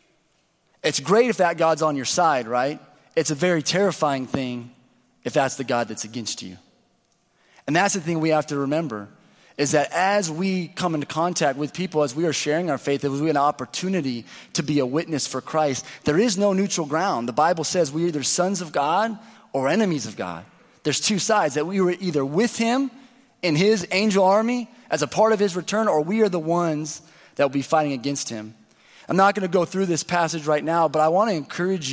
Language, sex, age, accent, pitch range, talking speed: English, male, 30-49, American, 140-185 Hz, 220 wpm